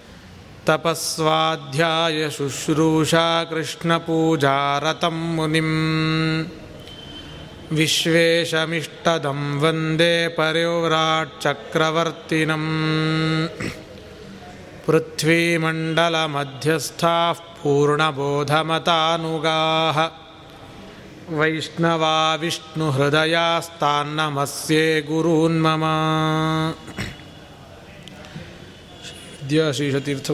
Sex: male